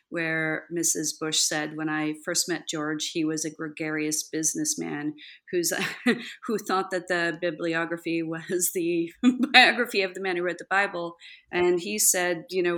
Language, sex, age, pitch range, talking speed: English, female, 40-59, 165-235 Hz, 165 wpm